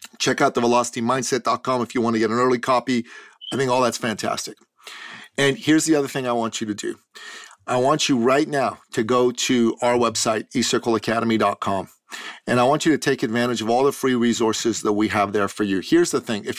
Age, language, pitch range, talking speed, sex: 40-59, English, 115-150 Hz, 220 wpm, male